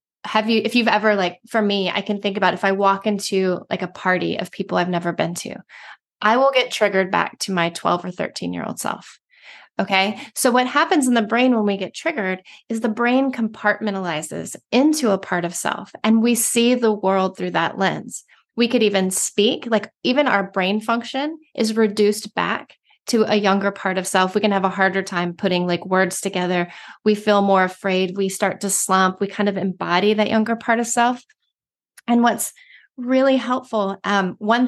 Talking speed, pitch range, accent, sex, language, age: 200 wpm, 190-230 Hz, American, female, English, 30-49